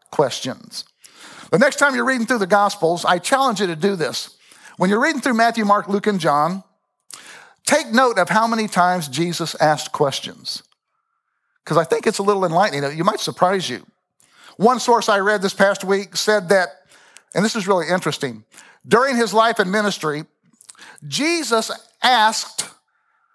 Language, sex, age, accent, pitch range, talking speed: English, male, 50-69, American, 185-240 Hz, 165 wpm